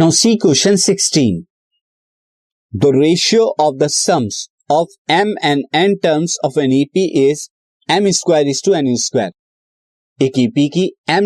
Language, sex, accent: Hindi, male, native